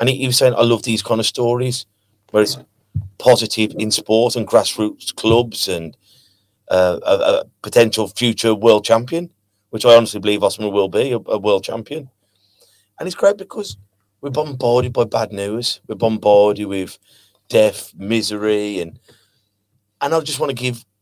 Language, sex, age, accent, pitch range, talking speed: English, male, 30-49, British, 100-120 Hz, 165 wpm